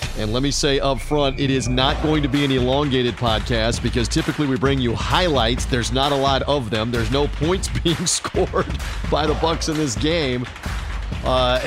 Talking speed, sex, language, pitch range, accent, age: 200 wpm, male, English, 125-165 Hz, American, 40-59